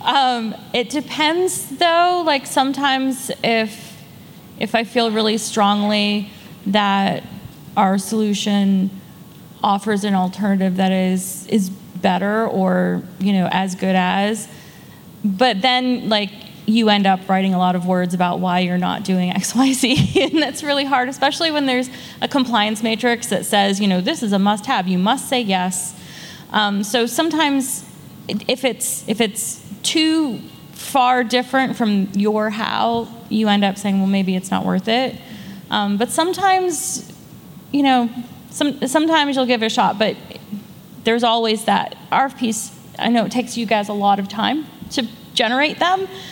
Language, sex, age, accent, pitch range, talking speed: English, female, 20-39, American, 195-250 Hz, 160 wpm